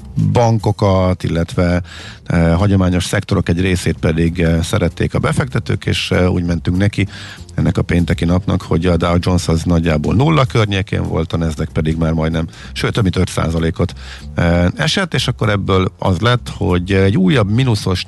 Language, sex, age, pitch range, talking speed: Hungarian, male, 50-69, 85-110 Hz, 165 wpm